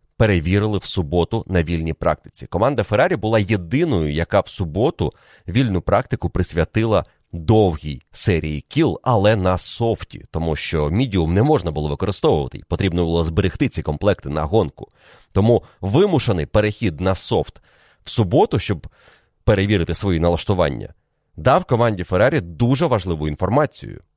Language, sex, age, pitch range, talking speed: Ukrainian, male, 30-49, 85-115 Hz, 130 wpm